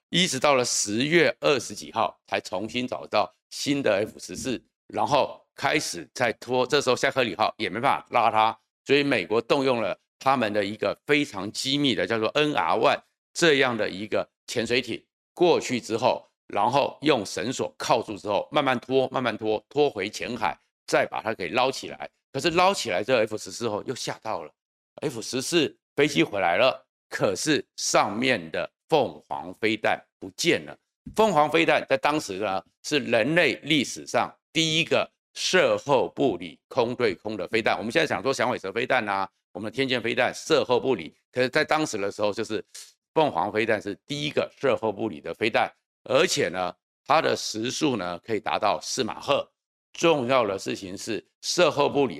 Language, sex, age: Chinese, male, 50-69